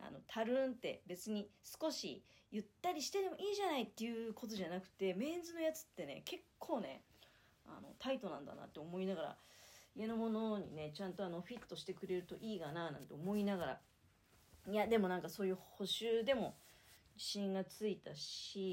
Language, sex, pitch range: Japanese, female, 180-245 Hz